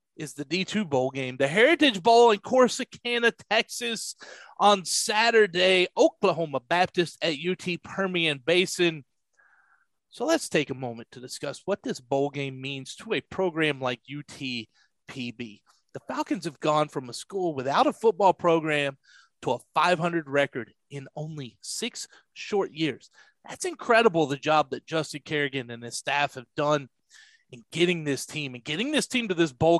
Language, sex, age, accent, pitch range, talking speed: English, male, 30-49, American, 145-225 Hz, 160 wpm